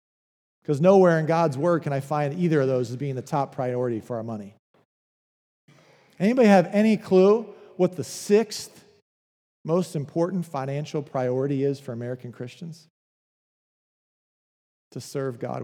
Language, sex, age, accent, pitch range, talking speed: English, male, 40-59, American, 140-205 Hz, 140 wpm